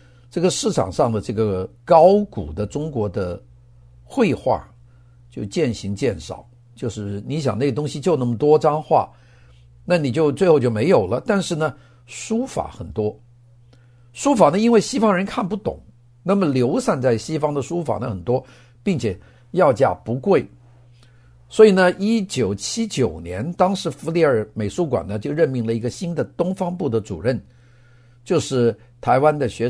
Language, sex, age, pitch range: Chinese, male, 50-69, 115-160 Hz